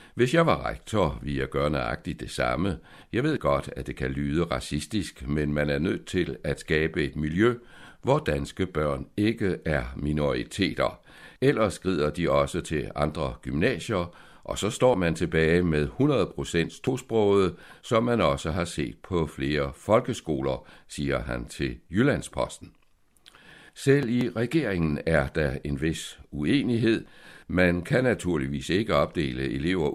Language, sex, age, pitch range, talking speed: Danish, male, 60-79, 70-105 Hz, 150 wpm